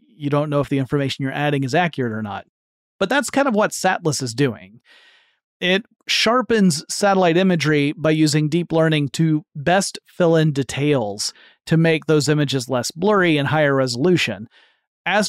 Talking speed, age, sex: 170 wpm, 40-59, male